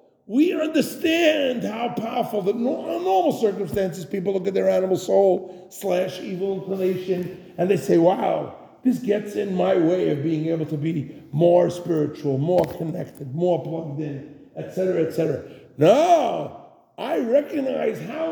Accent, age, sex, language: American, 50-69, male, English